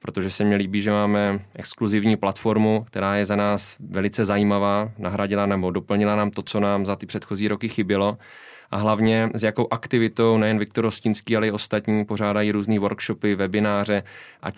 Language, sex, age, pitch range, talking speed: Czech, male, 20-39, 100-105 Hz, 175 wpm